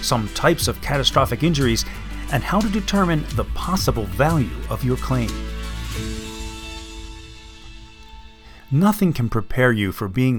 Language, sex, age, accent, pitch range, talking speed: English, male, 40-59, American, 110-165 Hz, 120 wpm